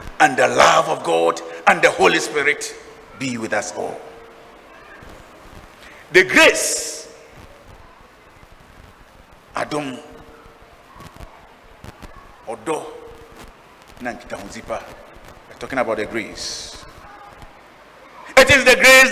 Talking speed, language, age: 80 wpm, English, 50-69